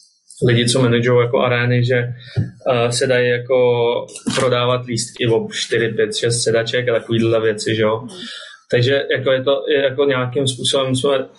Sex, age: male, 20-39